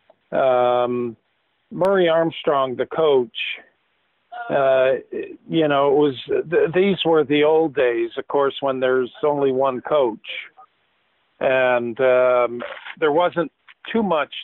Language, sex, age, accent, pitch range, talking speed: English, male, 50-69, American, 125-160 Hz, 115 wpm